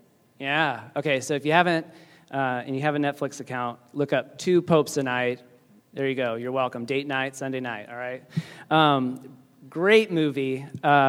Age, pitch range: 30-49, 130-160 Hz